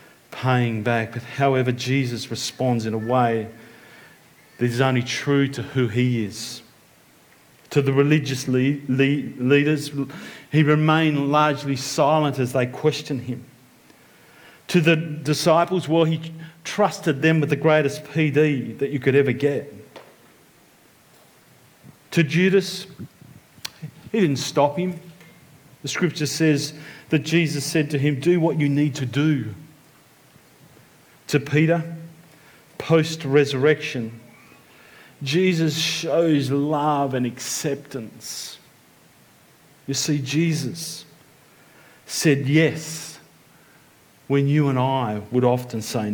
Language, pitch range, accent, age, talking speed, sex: English, 135-155 Hz, Australian, 40-59, 110 wpm, male